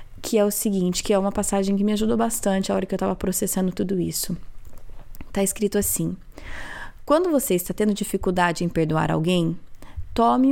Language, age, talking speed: Portuguese, 20-39, 185 wpm